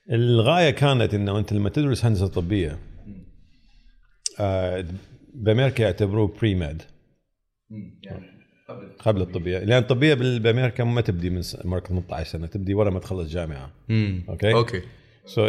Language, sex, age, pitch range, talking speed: Arabic, male, 50-69, 90-115 Hz, 125 wpm